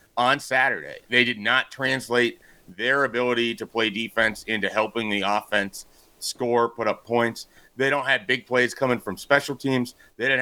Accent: American